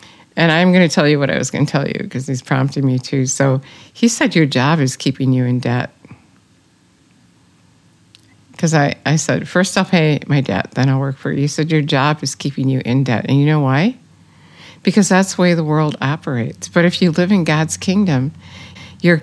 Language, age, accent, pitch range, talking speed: English, 60-79, American, 140-170 Hz, 220 wpm